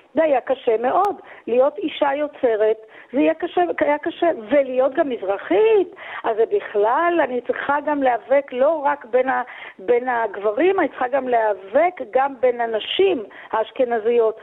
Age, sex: 40-59, female